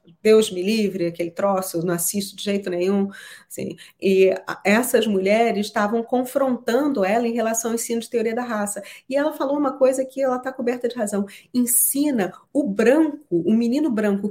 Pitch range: 195-250 Hz